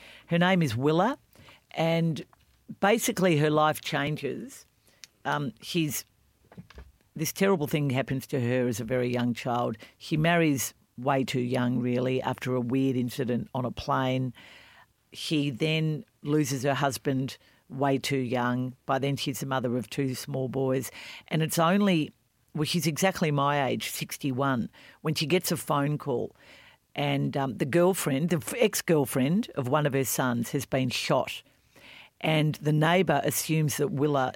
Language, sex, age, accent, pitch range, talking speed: English, female, 50-69, Australian, 130-155 Hz, 150 wpm